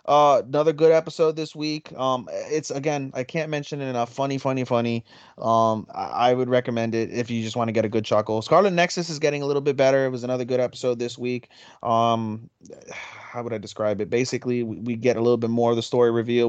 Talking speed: 235 wpm